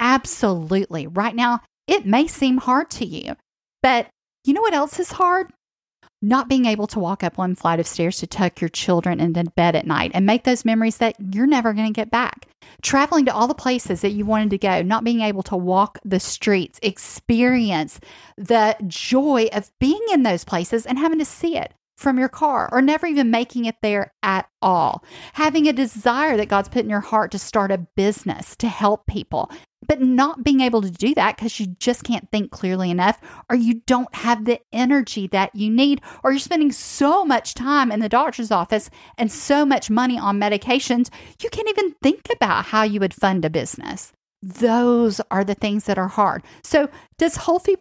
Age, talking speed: 40-59, 205 wpm